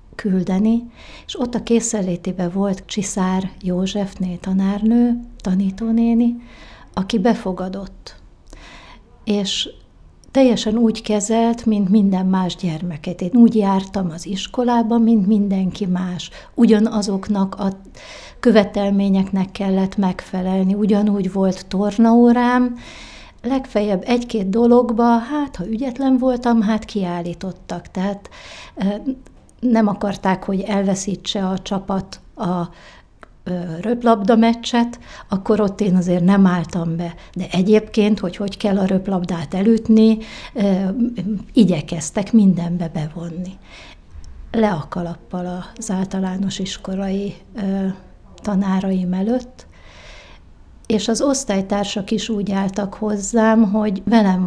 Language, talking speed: Hungarian, 95 wpm